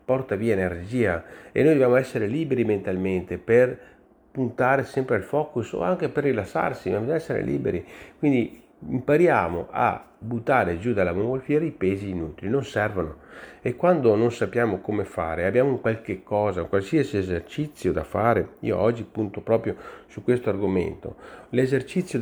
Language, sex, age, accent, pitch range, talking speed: Italian, male, 40-59, native, 100-135 Hz, 150 wpm